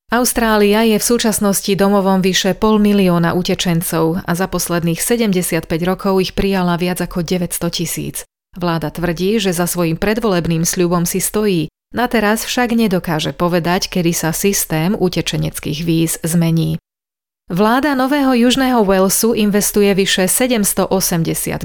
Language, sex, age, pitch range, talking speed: Slovak, female, 30-49, 170-205 Hz, 130 wpm